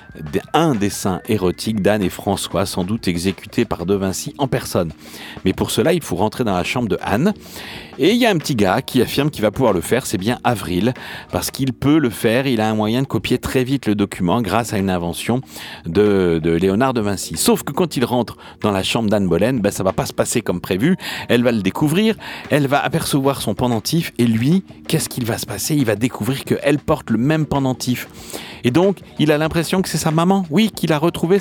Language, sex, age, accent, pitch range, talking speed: French, male, 40-59, French, 95-140 Hz, 235 wpm